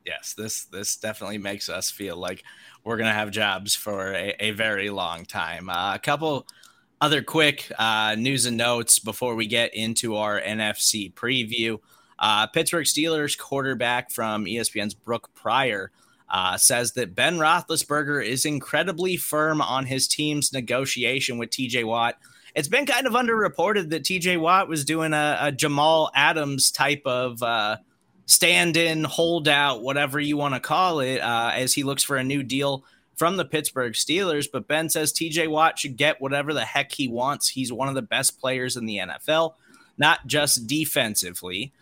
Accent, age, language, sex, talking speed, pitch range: American, 20-39, English, male, 175 wpm, 120-155 Hz